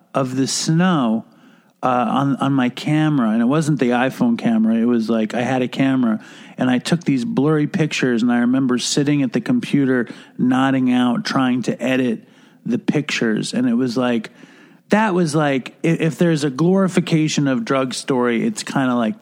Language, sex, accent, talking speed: English, male, American, 185 wpm